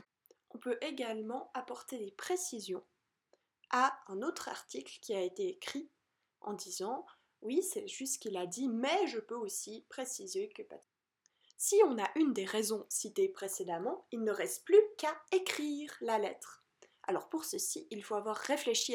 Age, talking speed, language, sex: 20-39, 170 wpm, French, female